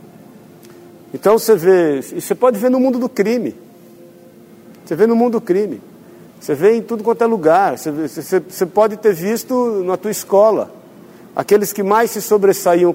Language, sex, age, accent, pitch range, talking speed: Portuguese, male, 50-69, Brazilian, 170-220 Hz, 170 wpm